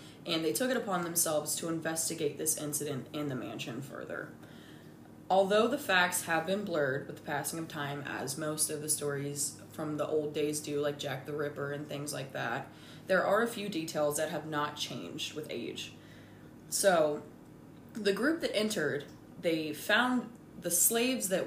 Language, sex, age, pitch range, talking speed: English, female, 20-39, 150-195 Hz, 180 wpm